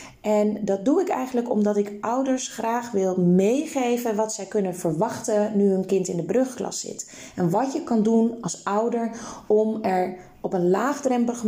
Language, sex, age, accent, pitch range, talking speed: Dutch, female, 20-39, Dutch, 195-235 Hz, 180 wpm